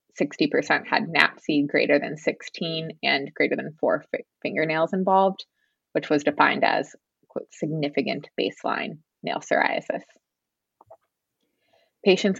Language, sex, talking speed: English, female, 95 wpm